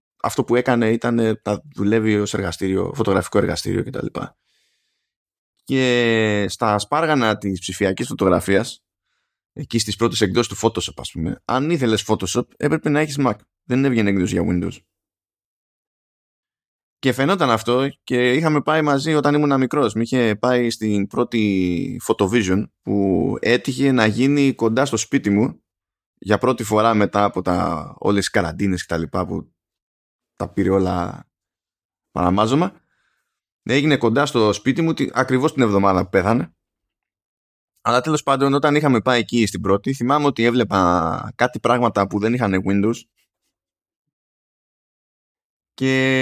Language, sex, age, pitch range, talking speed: Greek, male, 20-39, 100-130 Hz, 135 wpm